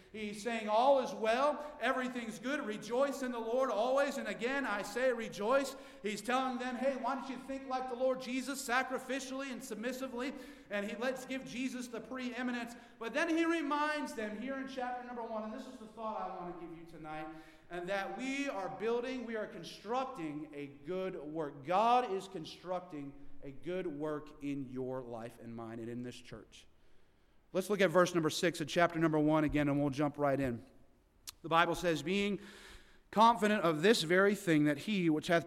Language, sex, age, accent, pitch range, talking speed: English, male, 40-59, American, 140-235 Hz, 195 wpm